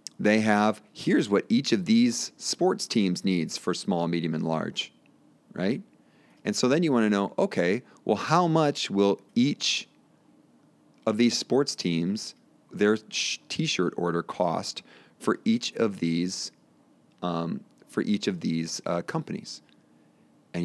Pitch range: 85-105 Hz